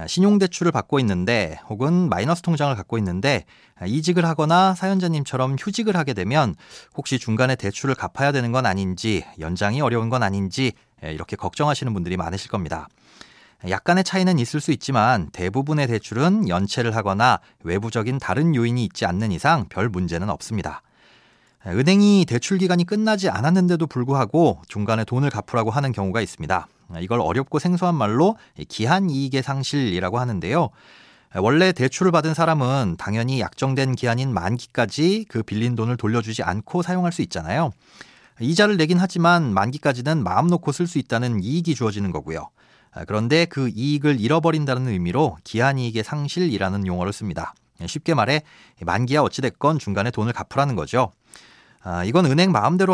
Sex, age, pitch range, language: male, 30-49, 110-160 Hz, Korean